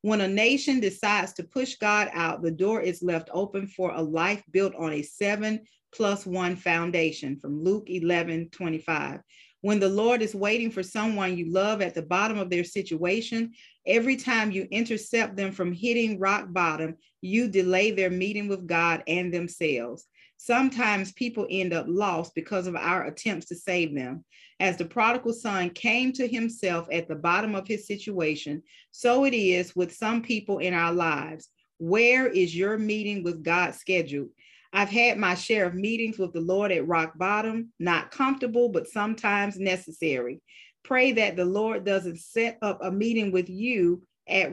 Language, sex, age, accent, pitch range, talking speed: English, female, 40-59, American, 175-220 Hz, 170 wpm